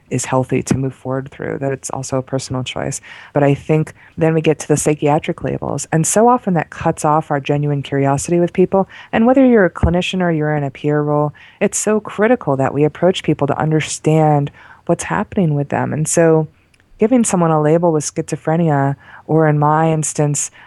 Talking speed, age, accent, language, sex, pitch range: 200 wpm, 20-39, American, English, female, 145-170 Hz